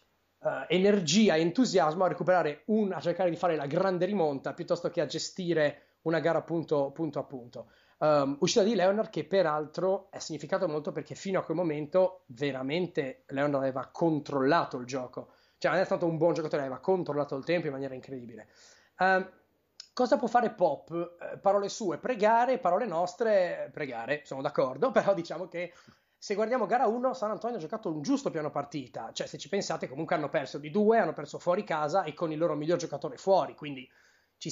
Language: Italian